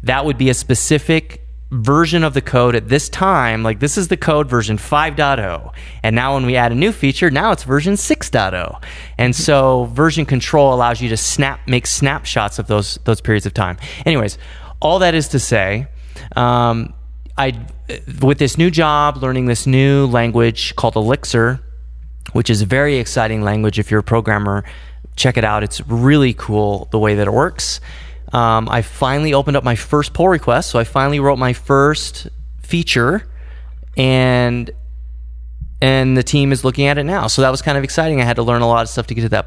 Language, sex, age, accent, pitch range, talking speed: English, male, 30-49, American, 105-135 Hz, 195 wpm